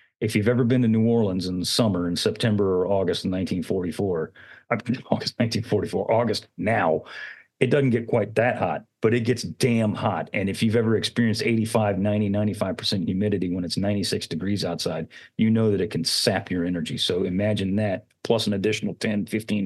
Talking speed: 180 wpm